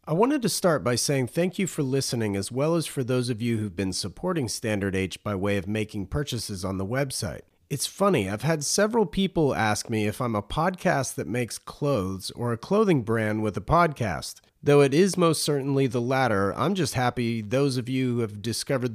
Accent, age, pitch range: American, 30-49, 105-150 Hz